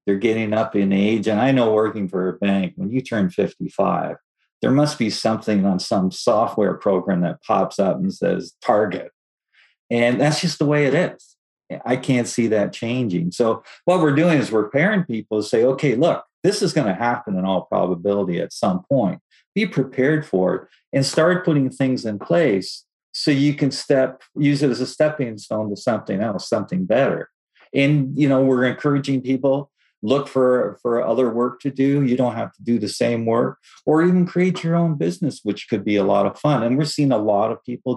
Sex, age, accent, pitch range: male, 50-69, American, 115-155 Hz